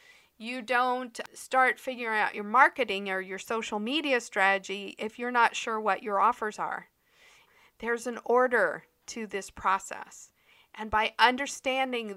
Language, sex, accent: English, female, American